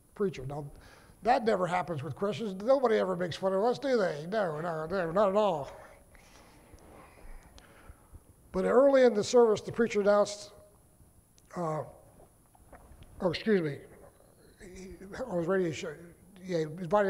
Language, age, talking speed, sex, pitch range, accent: English, 60-79, 140 wpm, male, 155-205 Hz, American